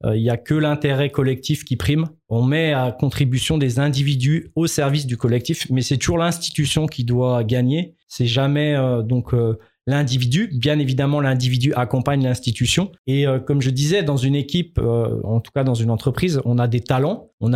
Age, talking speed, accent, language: 20-39, 190 wpm, French, French